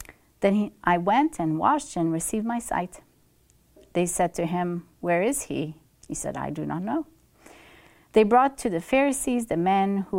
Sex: female